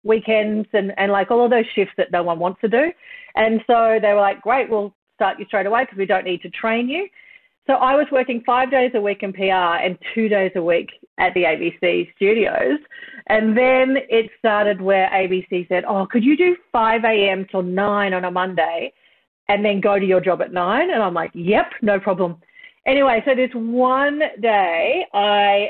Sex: female